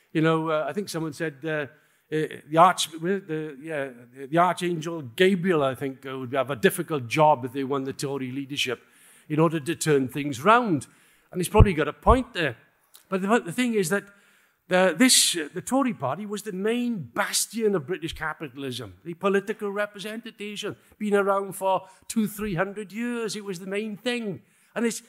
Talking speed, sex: 195 wpm, male